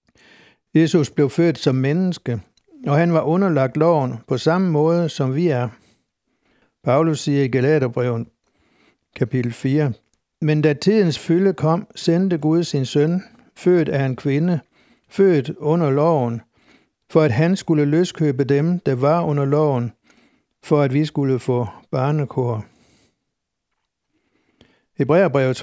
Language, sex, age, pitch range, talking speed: Danish, male, 60-79, 135-170 Hz, 130 wpm